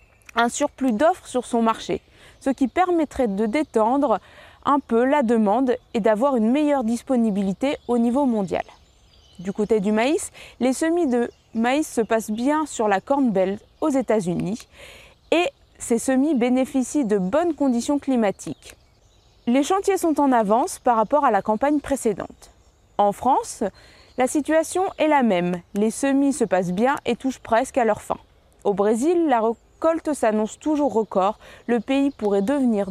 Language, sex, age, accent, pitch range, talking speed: French, female, 20-39, French, 225-285 Hz, 160 wpm